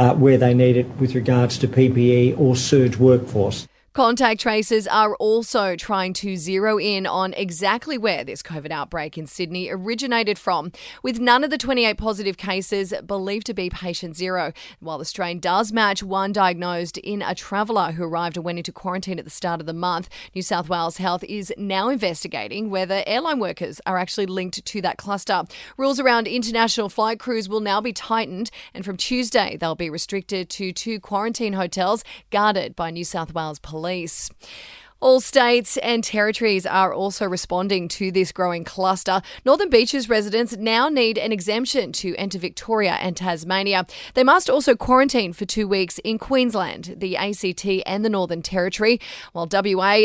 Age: 30-49